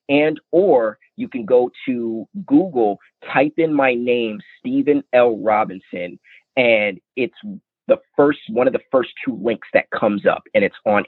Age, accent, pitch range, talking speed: 30-49, American, 110-140 Hz, 160 wpm